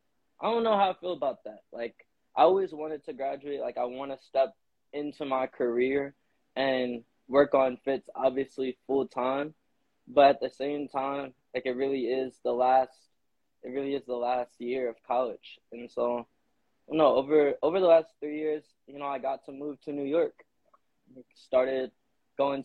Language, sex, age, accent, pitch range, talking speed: English, male, 20-39, American, 125-145 Hz, 180 wpm